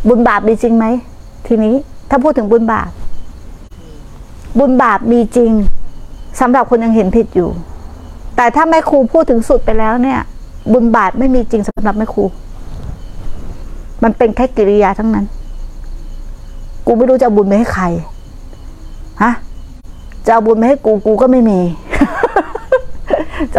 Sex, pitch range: female, 200-285 Hz